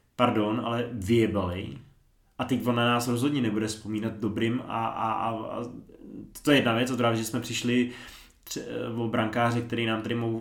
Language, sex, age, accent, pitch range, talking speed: Czech, male, 20-39, native, 105-120 Hz, 175 wpm